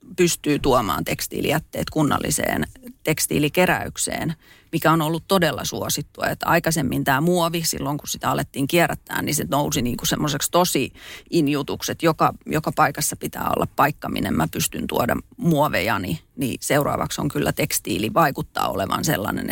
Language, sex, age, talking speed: Finnish, female, 30-49, 140 wpm